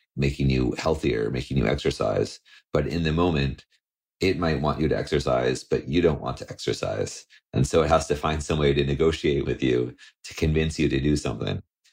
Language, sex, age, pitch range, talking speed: English, male, 30-49, 70-80 Hz, 200 wpm